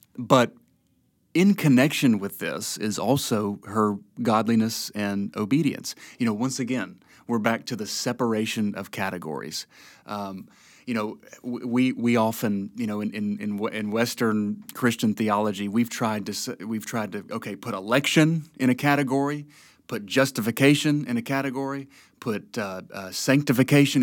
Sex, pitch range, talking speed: male, 115-150 Hz, 140 wpm